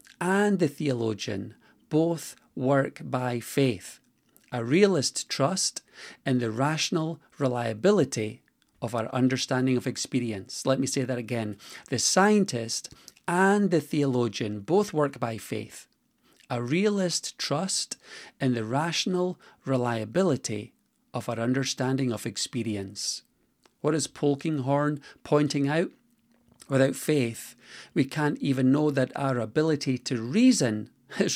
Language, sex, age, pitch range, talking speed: English, male, 40-59, 120-155 Hz, 120 wpm